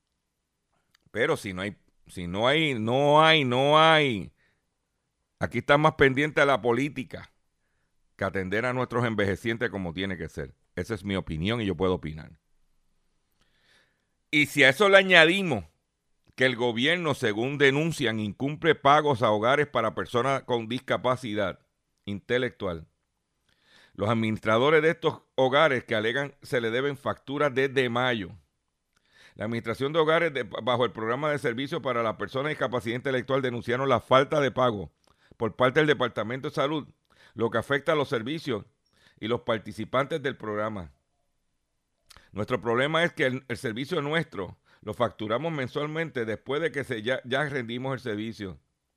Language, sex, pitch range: Spanish, male, 105-140 Hz